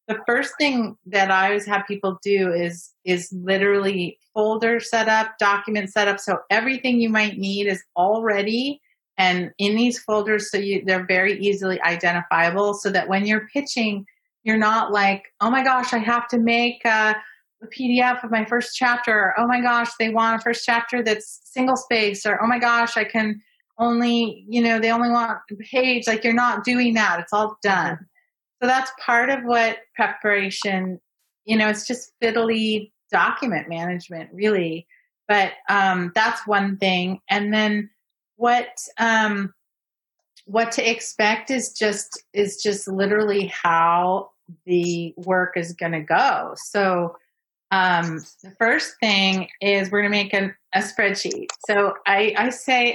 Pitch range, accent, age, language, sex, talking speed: 195-235 Hz, American, 30-49, English, female, 160 wpm